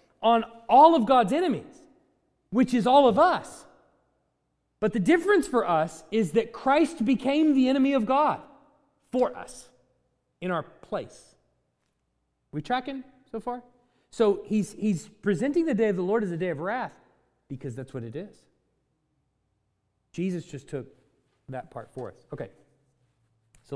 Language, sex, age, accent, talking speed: English, male, 30-49, American, 155 wpm